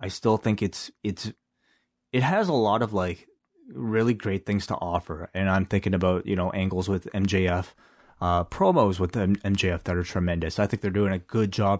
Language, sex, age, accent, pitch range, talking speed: English, male, 20-39, American, 90-110 Hz, 200 wpm